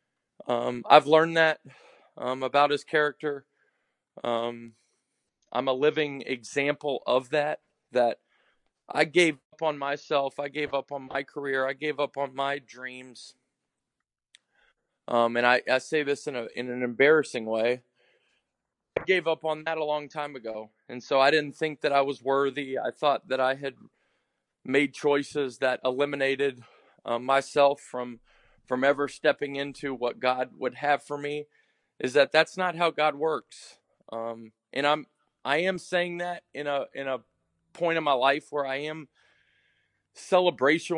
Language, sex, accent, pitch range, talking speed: English, male, American, 130-155 Hz, 165 wpm